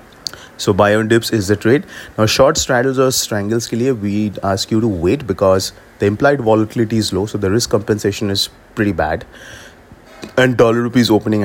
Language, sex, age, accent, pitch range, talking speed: English, male, 30-49, Indian, 95-115 Hz, 180 wpm